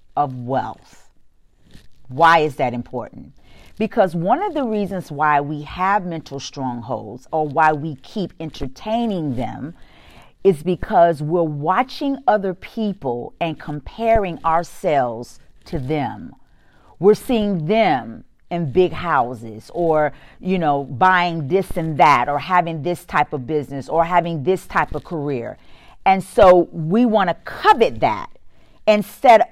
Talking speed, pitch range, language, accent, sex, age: 135 wpm, 155-225 Hz, English, American, female, 40-59